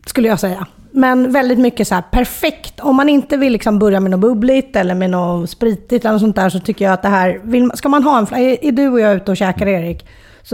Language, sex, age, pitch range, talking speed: Swedish, female, 30-49, 185-230 Hz, 275 wpm